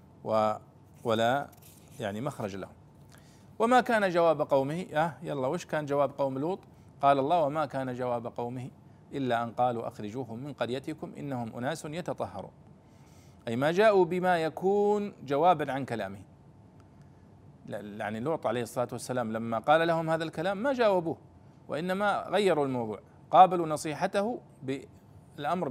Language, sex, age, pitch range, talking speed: Arabic, male, 40-59, 125-170 Hz, 130 wpm